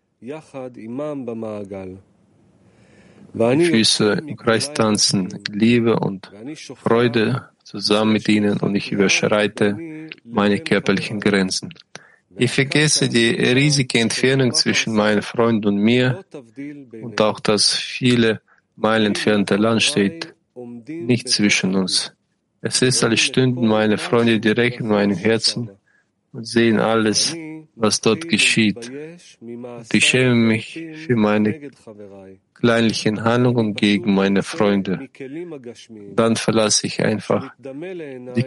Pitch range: 105-130 Hz